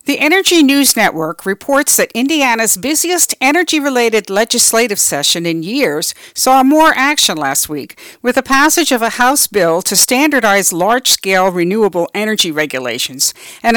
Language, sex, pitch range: English, female, 185-265 Hz